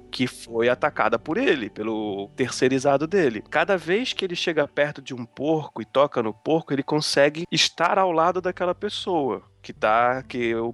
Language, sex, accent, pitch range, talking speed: Portuguese, male, Brazilian, 125-160 Hz, 180 wpm